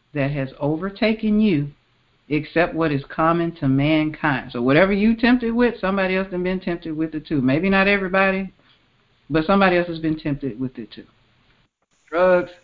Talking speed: 170 wpm